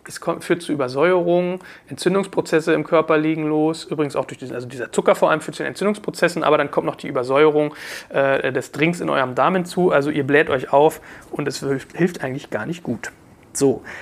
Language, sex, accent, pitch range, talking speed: German, male, German, 150-180 Hz, 210 wpm